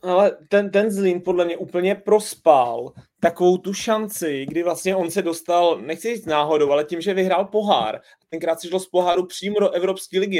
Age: 20-39